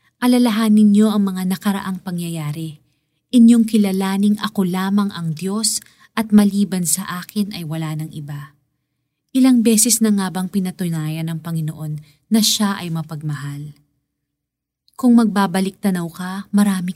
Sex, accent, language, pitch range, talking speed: female, native, Filipino, 170-215 Hz, 130 wpm